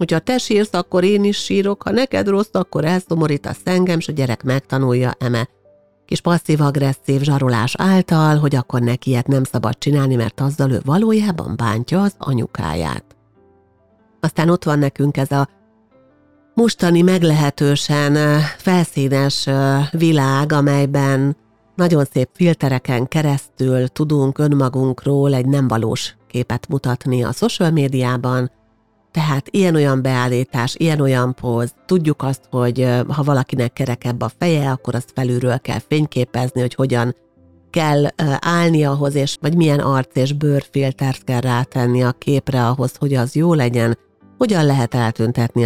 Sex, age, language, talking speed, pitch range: female, 50-69, Hungarian, 135 wpm, 125-150 Hz